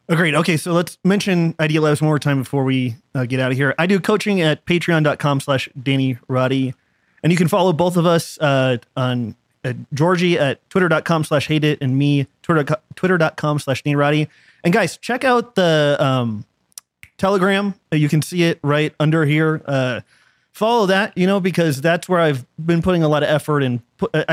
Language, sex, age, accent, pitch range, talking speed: English, male, 30-49, American, 135-170 Hz, 195 wpm